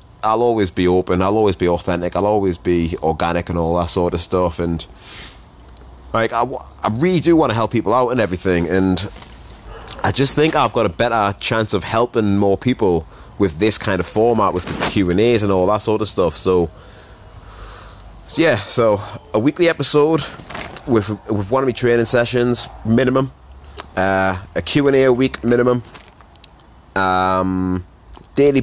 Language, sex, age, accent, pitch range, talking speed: English, male, 30-49, British, 90-120 Hz, 170 wpm